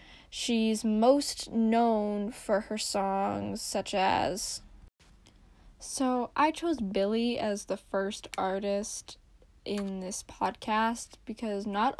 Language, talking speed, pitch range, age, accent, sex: English, 105 wpm, 200-230 Hz, 10-29, American, female